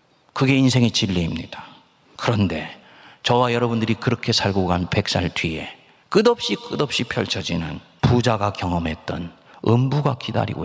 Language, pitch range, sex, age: Korean, 95-135 Hz, male, 40-59